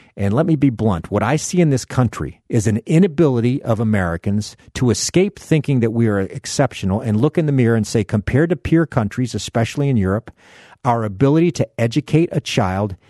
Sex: male